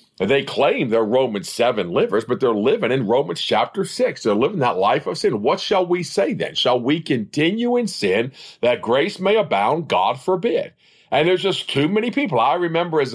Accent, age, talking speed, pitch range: American, 50-69, 200 wpm, 130-205 Hz